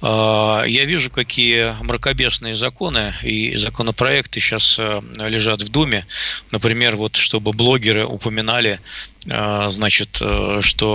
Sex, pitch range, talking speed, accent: male, 105-125 Hz, 100 wpm, native